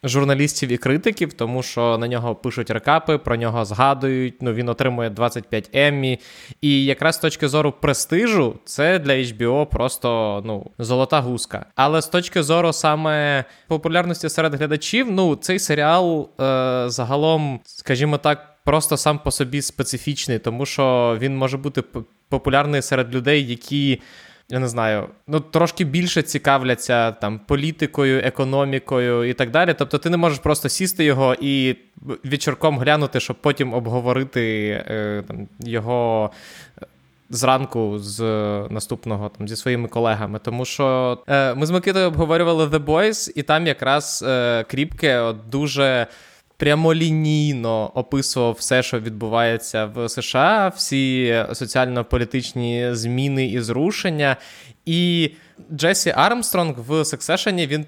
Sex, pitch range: male, 120-155 Hz